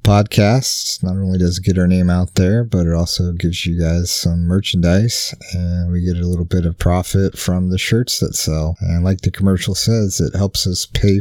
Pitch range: 85-100 Hz